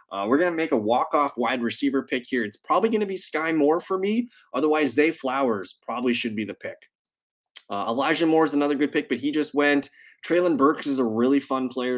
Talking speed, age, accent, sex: 230 wpm, 20-39, American, male